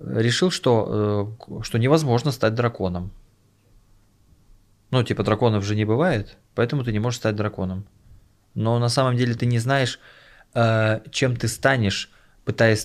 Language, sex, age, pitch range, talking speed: Russian, male, 20-39, 100-125 Hz, 135 wpm